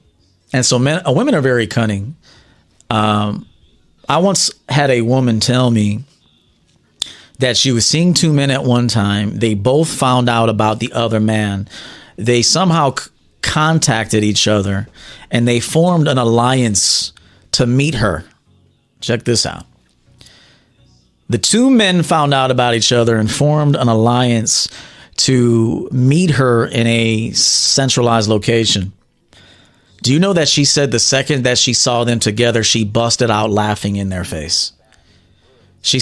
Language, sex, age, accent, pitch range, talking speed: English, male, 40-59, American, 105-125 Hz, 150 wpm